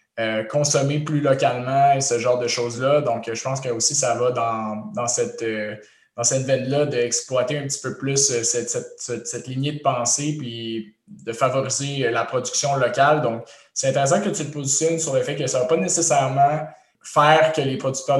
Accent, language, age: Canadian, French, 20-39